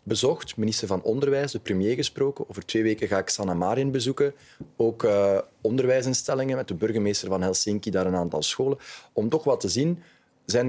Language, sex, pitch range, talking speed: Dutch, male, 100-145 Hz, 185 wpm